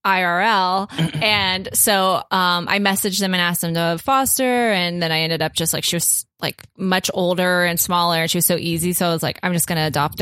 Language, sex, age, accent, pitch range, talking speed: English, female, 20-39, American, 175-205 Hz, 230 wpm